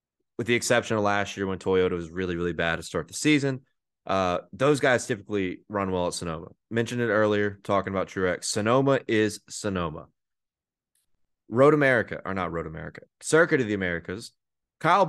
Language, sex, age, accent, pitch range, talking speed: English, male, 20-39, American, 100-145 Hz, 175 wpm